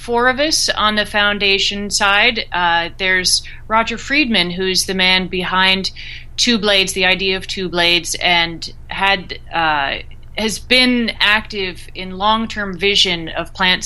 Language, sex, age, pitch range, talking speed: English, female, 30-49, 180-215 Hz, 145 wpm